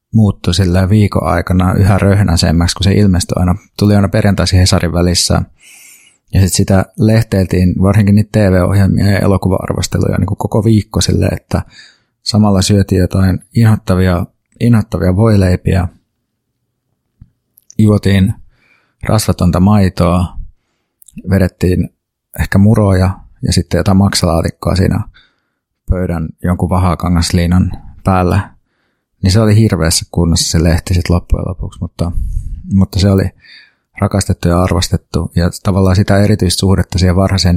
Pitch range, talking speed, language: 90-100 Hz, 110 wpm, Finnish